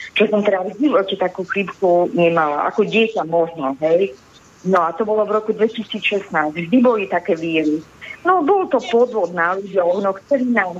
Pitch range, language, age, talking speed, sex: 175-215 Hz, Slovak, 40-59, 165 wpm, female